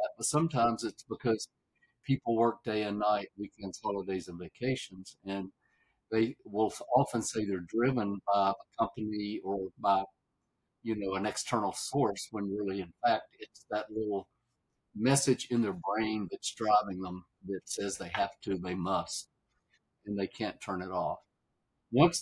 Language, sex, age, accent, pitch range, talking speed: English, male, 50-69, American, 100-120 Hz, 155 wpm